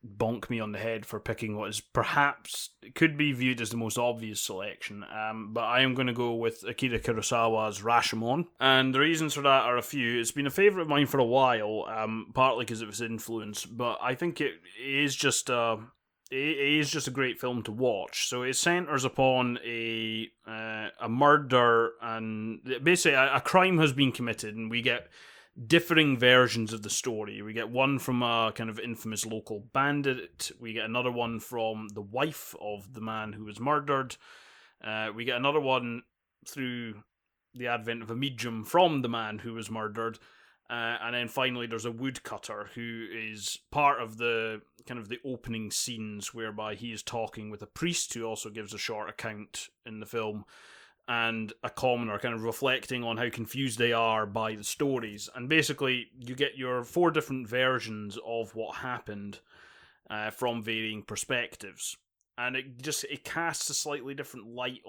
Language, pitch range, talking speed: English, 110-130 Hz, 185 wpm